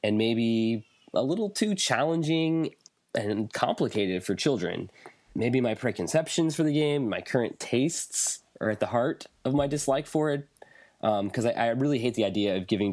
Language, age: English, 20-39